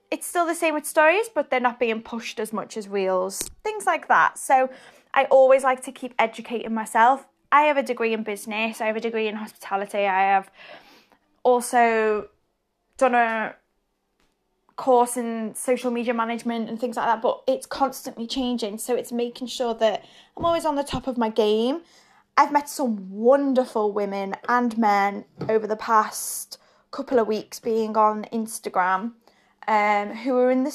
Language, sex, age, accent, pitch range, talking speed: English, female, 10-29, British, 215-260 Hz, 175 wpm